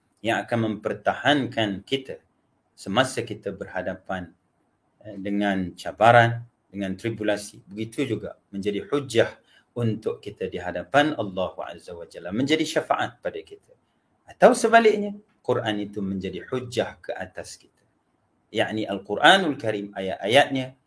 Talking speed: 115 wpm